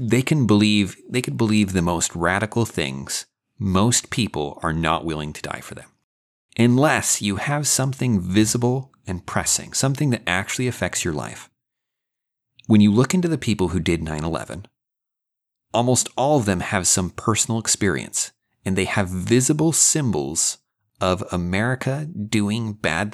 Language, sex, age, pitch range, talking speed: English, male, 30-49, 85-125 Hz, 150 wpm